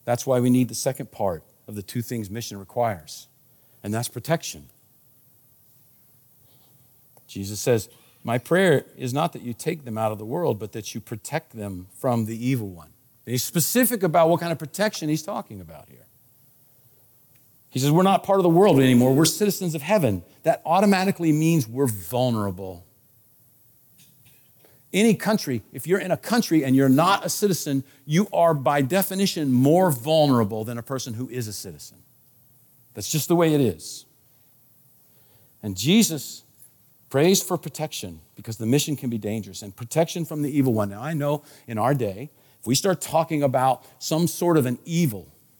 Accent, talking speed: American, 175 wpm